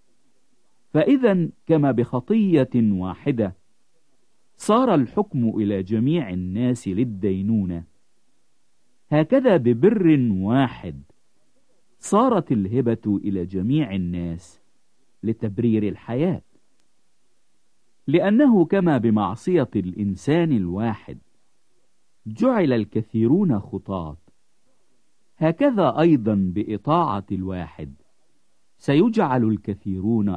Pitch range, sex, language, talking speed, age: 95-150 Hz, male, English, 65 wpm, 50-69